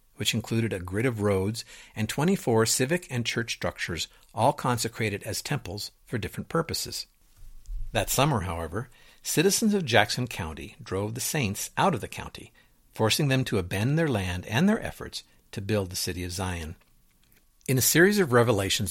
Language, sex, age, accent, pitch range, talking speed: English, male, 50-69, American, 100-130 Hz, 170 wpm